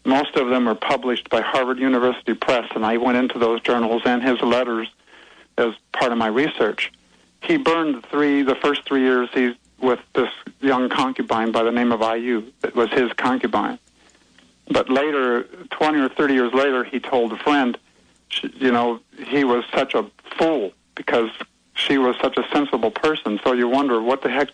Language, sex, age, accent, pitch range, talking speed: English, male, 50-69, American, 115-135 Hz, 185 wpm